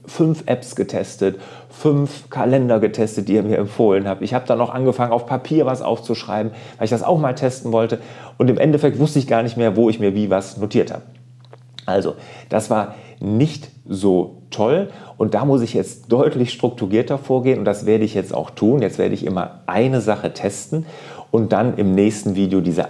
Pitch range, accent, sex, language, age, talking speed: 100-130 Hz, German, male, German, 40-59, 200 wpm